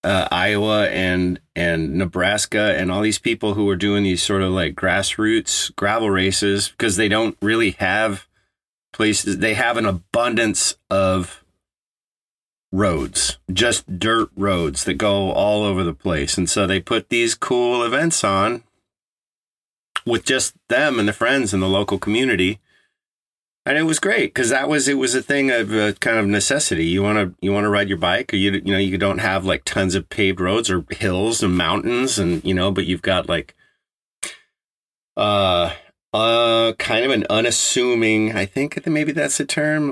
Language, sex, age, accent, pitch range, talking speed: English, male, 40-59, American, 95-115 Hz, 180 wpm